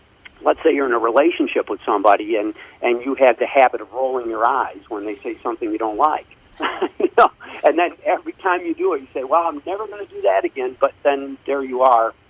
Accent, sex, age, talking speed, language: American, male, 50-69, 240 wpm, English